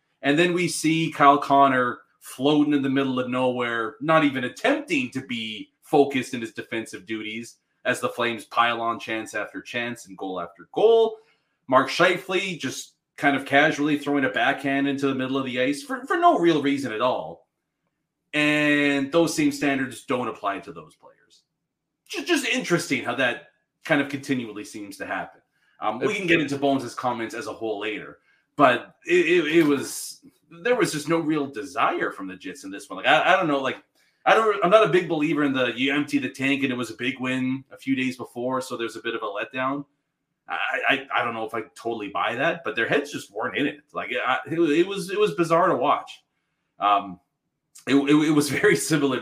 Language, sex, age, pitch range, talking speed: English, male, 30-49, 125-160 Hz, 210 wpm